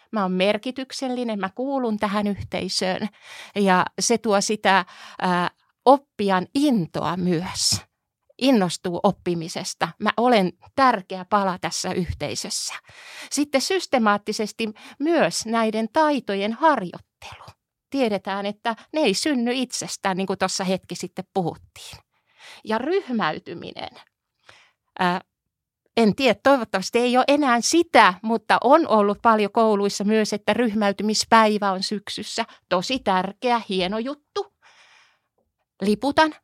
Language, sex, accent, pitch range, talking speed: Finnish, female, native, 190-245 Hz, 105 wpm